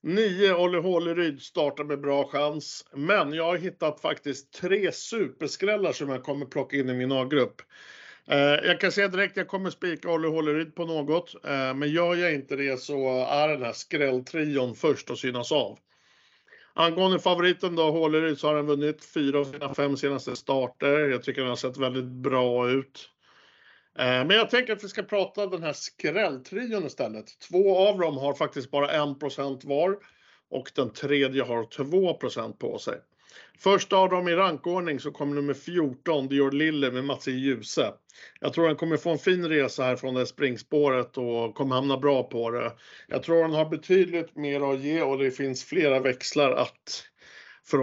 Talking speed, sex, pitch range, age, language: 180 wpm, male, 135-175 Hz, 60-79, Swedish